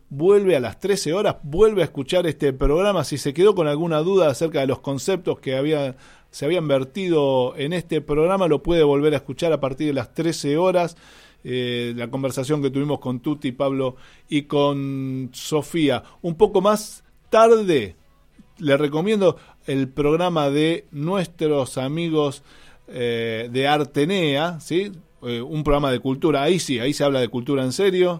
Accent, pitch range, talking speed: Argentinian, 135-170 Hz, 170 wpm